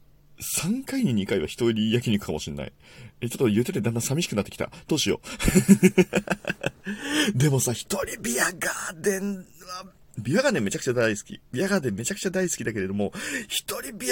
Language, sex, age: Japanese, male, 40-59